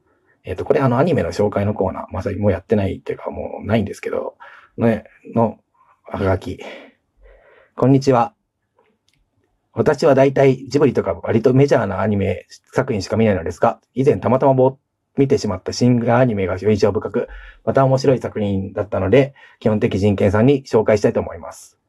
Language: Japanese